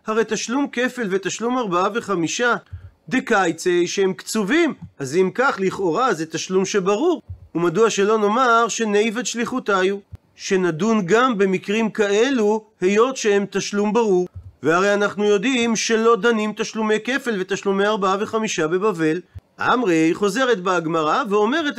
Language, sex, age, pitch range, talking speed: Hebrew, male, 40-59, 185-235 Hz, 125 wpm